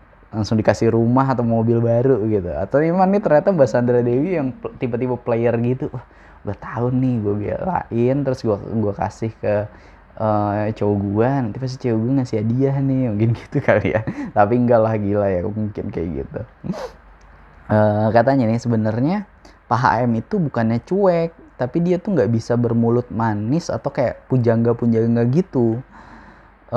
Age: 10-29